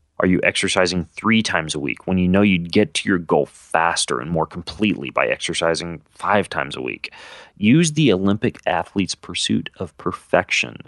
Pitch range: 80-105 Hz